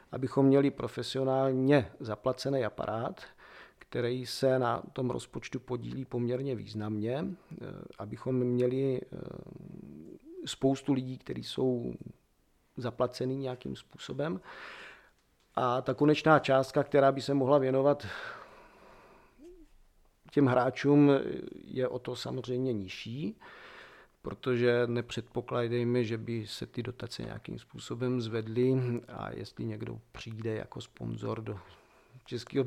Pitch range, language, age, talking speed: 120-140 Hz, Czech, 40-59, 105 wpm